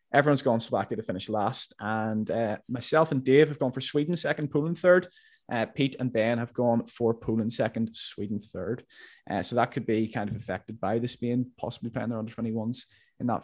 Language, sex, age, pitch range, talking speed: English, male, 20-39, 125-155 Hz, 205 wpm